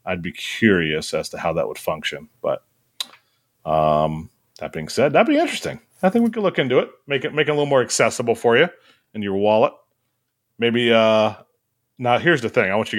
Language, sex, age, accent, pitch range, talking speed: English, male, 30-49, American, 100-155 Hz, 215 wpm